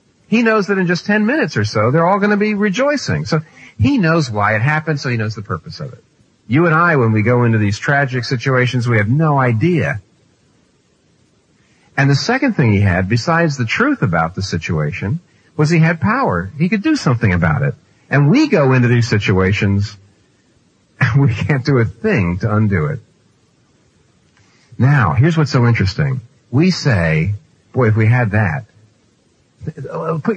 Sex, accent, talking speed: male, American, 180 wpm